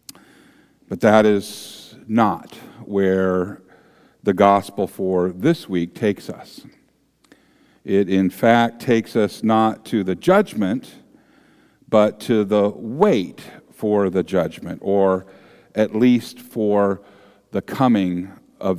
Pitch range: 105-140 Hz